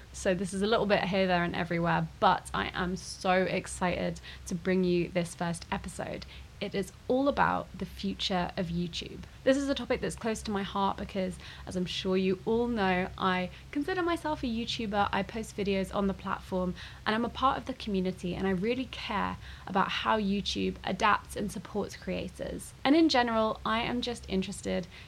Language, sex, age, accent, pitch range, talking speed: English, female, 20-39, British, 185-225 Hz, 195 wpm